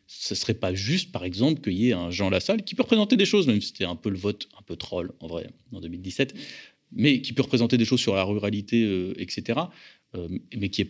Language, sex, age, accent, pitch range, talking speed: French, male, 30-49, French, 95-125 Hz, 260 wpm